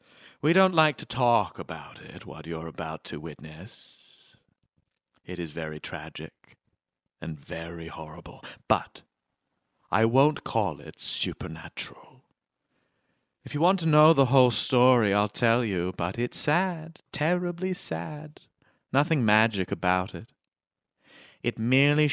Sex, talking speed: male, 125 wpm